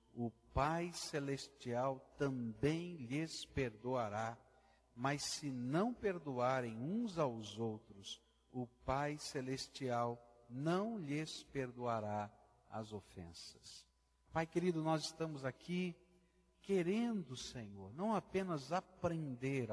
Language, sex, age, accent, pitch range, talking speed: Portuguese, male, 60-79, Brazilian, 115-170 Hz, 95 wpm